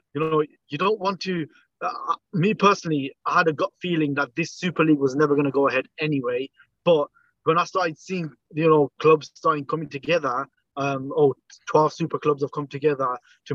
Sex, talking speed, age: male, 200 wpm, 20-39